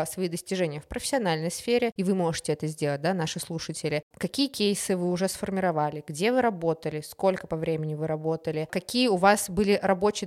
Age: 20-39